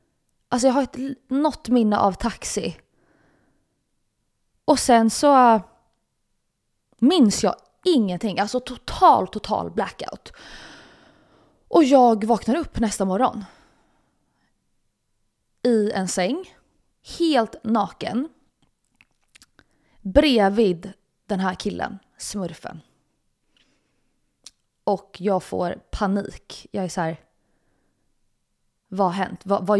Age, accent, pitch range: 20-39, native, 190-245 Hz